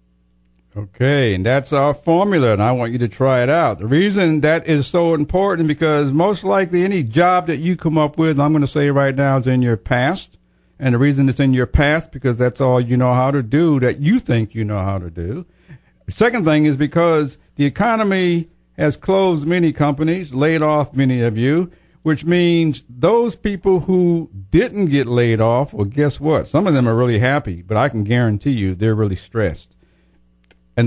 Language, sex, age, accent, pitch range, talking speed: English, male, 50-69, American, 115-160 Hz, 205 wpm